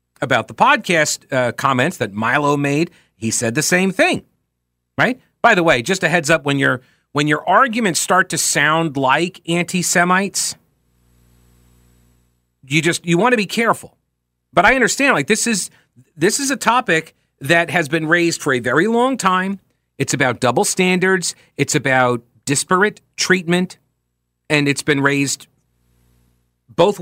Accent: American